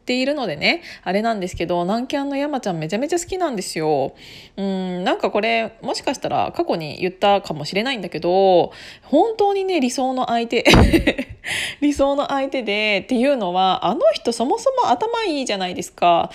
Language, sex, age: Japanese, female, 20-39